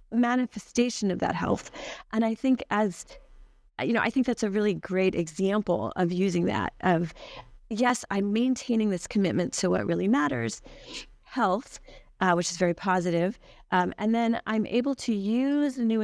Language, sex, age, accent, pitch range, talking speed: English, female, 30-49, American, 170-210 Hz, 165 wpm